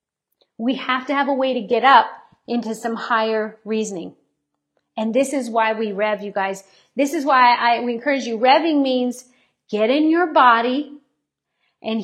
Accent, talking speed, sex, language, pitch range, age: American, 180 wpm, female, English, 225-275 Hz, 40-59